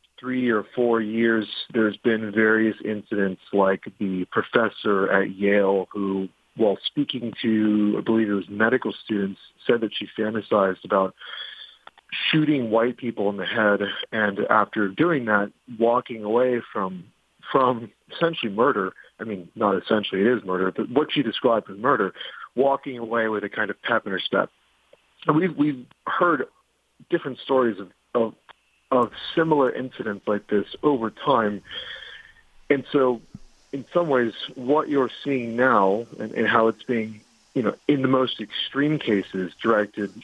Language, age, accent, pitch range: English, 40-59, American, 105-125 Hz